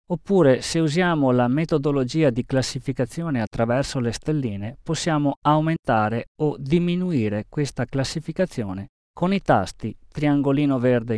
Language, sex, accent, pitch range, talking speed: Italian, male, native, 115-155 Hz, 115 wpm